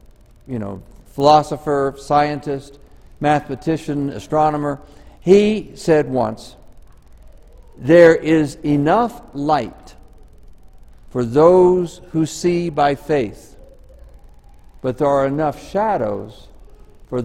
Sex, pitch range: male, 135-185 Hz